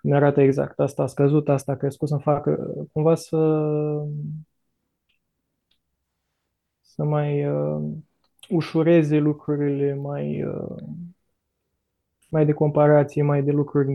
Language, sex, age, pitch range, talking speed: Romanian, male, 20-39, 140-160 Hz, 115 wpm